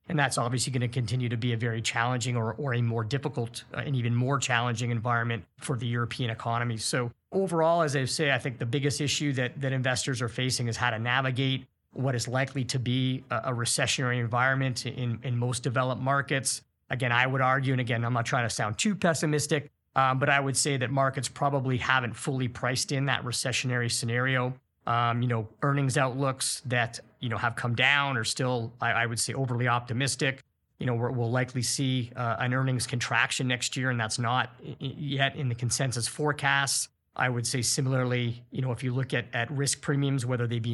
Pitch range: 120-135 Hz